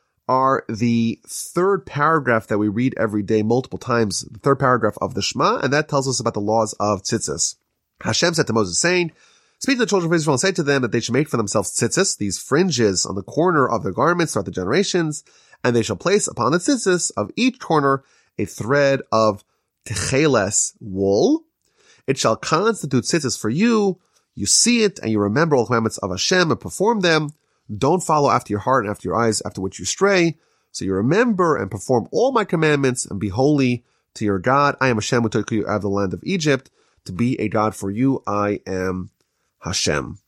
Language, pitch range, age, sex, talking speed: English, 105-155 Hz, 30-49, male, 210 wpm